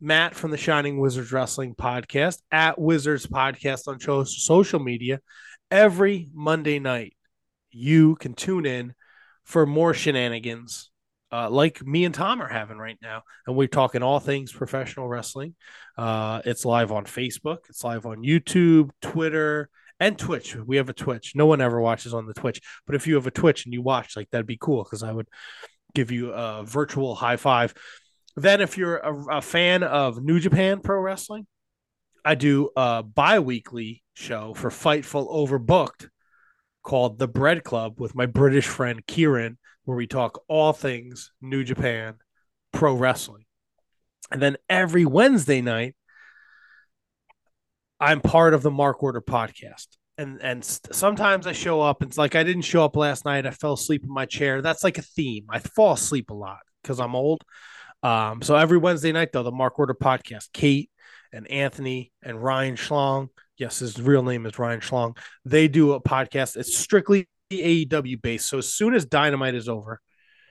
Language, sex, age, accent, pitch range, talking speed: English, male, 20-39, American, 120-155 Hz, 175 wpm